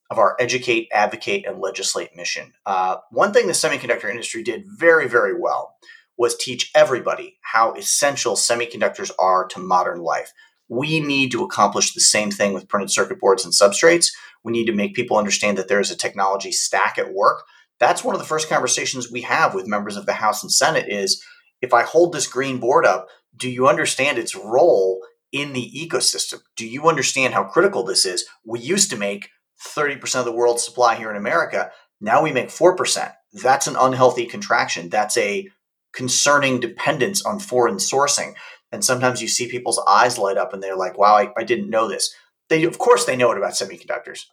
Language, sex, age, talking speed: English, male, 30-49, 195 wpm